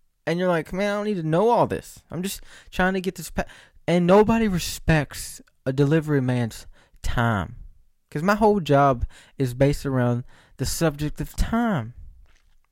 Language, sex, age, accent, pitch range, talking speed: English, male, 20-39, American, 120-180 Hz, 165 wpm